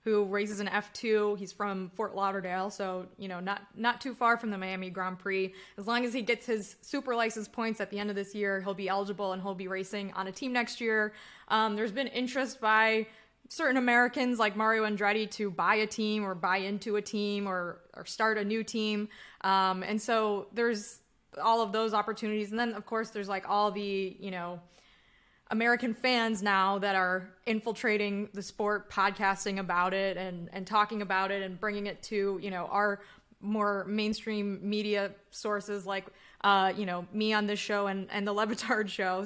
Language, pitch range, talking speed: English, 195-220 Hz, 200 wpm